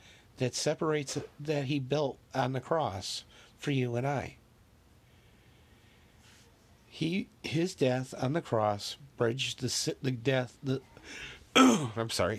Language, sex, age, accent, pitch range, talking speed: English, male, 50-69, American, 110-145 Hz, 120 wpm